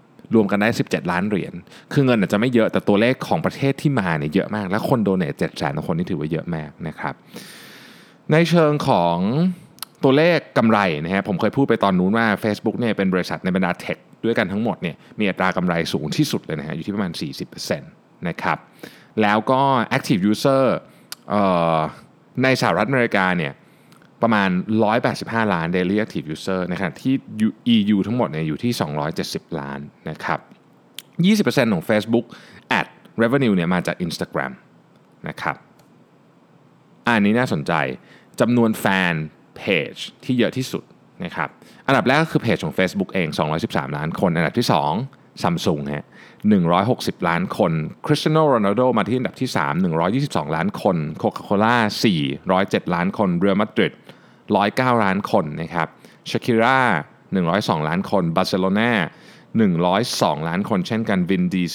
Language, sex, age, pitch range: Thai, male, 20-39, 95-135 Hz